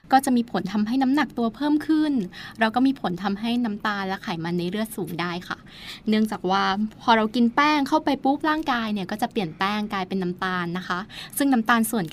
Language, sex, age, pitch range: Thai, female, 20-39, 190-245 Hz